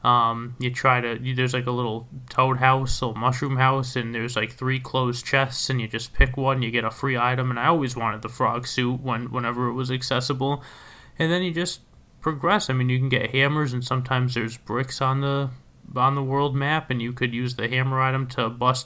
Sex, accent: male, American